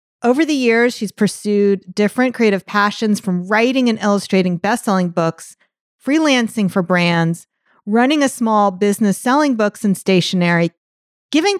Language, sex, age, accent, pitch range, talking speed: English, female, 40-59, American, 200-265 Hz, 135 wpm